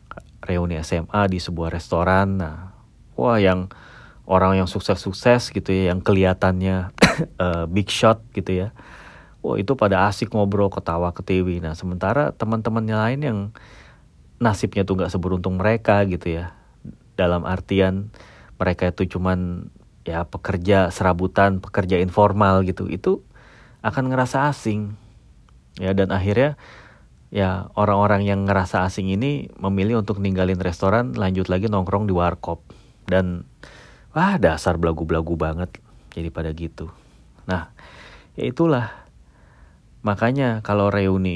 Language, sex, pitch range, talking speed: Indonesian, male, 90-110 Hz, 130 wpm